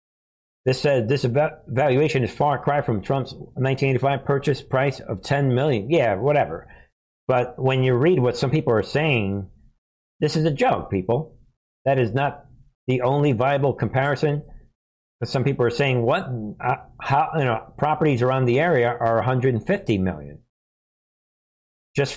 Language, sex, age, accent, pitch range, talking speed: English, male, 60-79, American, 120-145 Hz, 150 wpm